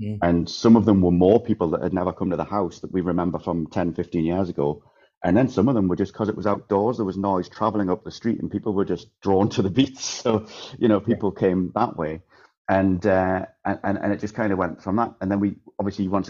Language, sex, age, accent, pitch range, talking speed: English, male, 30-49, British, 90-105 Hz, 260 wpm